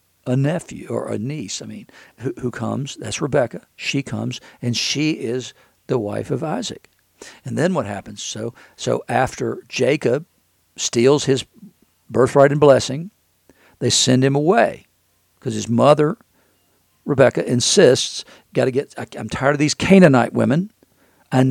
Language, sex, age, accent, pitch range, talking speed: English, male, 60-79, American, 105-140 Hz, 150 wpm